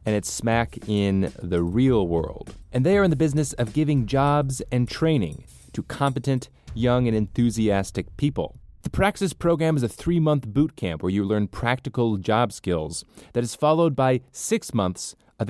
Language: English